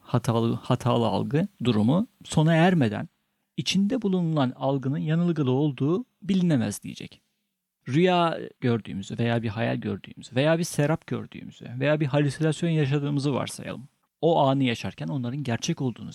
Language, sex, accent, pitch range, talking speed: Turkish, male, native, 125-170 Hz, 125 wpm